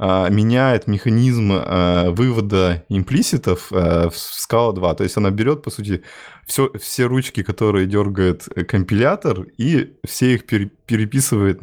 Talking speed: 120 wpm